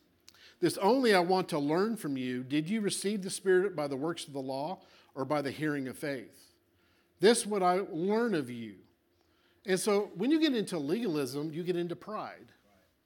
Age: 50-69